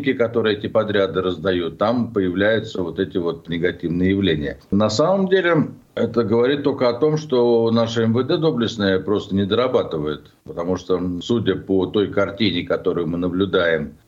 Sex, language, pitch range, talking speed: male, Russian, 90-115 Hz, 150 wpm